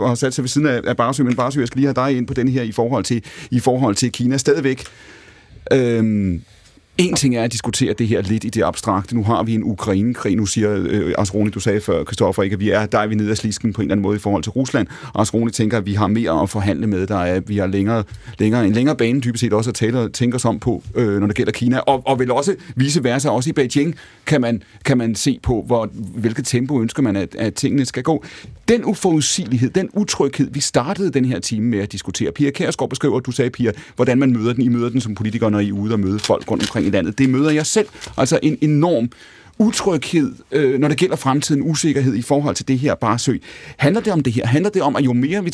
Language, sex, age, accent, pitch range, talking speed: Danish, male, 30-49, native, 110-145 Hz, 255 wpm